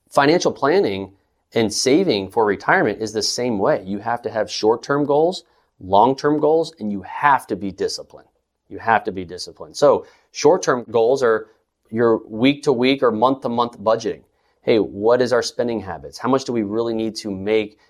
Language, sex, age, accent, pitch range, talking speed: English, male, 30-49, American, 105-140 Hz, 175 wpm